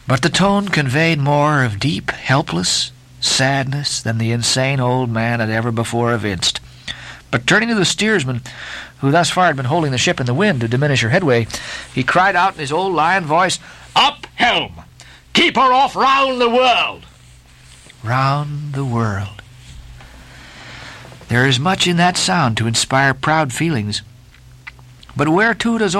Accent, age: American, 50-69